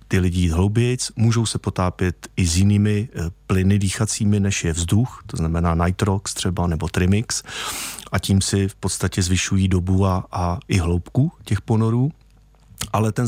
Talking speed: 160 wpm